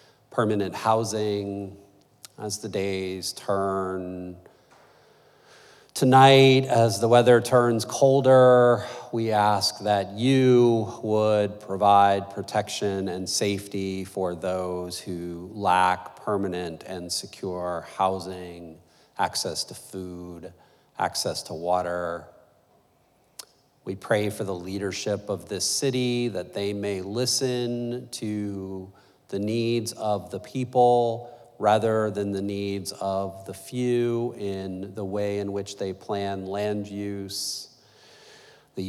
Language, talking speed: English, 110 wpm